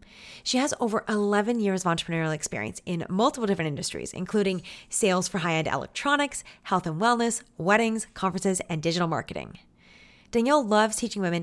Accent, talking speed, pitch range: American, 150 wpm, 175-235 Hz